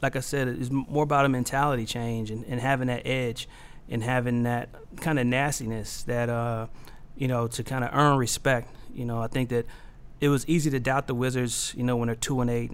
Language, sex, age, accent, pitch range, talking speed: English, male, 30-49, American, 120-135 Hz, 225 wpm